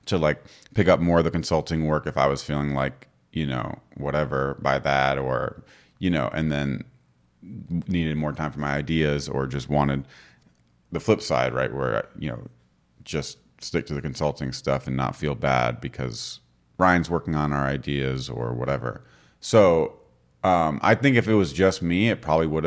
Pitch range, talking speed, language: 70-85 Hz, 185 wpm, English